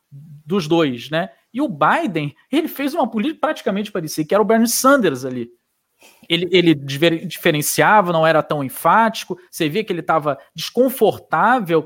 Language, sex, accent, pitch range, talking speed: English, male, Brazilian, 150-230 Hz, 155 wpm